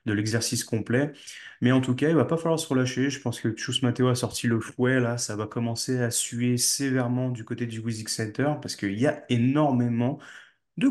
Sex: male